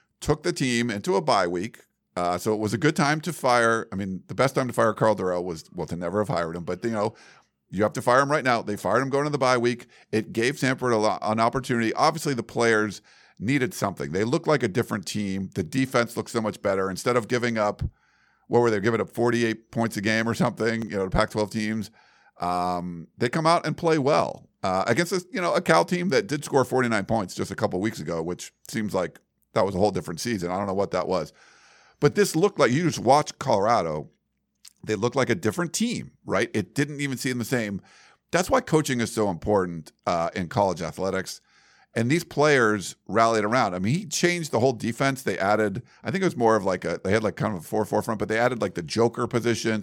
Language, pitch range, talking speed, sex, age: English, 105-130 Hz, 240 wpm, male, 50-69